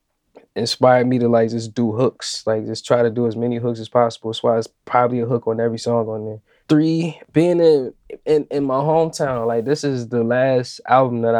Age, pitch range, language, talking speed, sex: 20-39, 115-130 Hz, English, 220 wpm, male